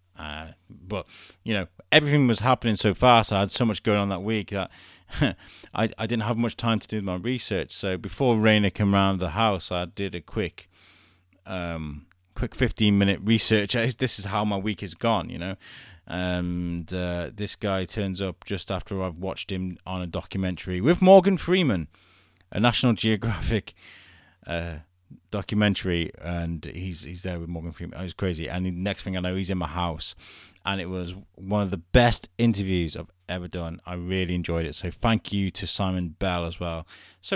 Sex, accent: male, British